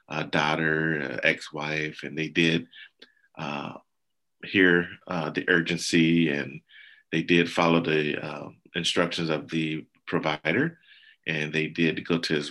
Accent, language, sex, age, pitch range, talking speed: American, English, male, 30-49, 75-85 Hz, 135 wpm